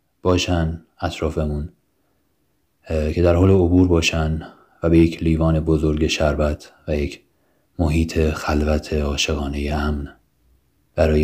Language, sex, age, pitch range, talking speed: Persian, male, 30-49, 80-95 Hz, 105 wpm